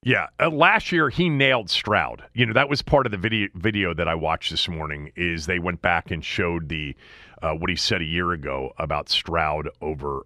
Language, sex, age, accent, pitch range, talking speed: English, male, 40-59, American, 95-125 Hz, 220 wpm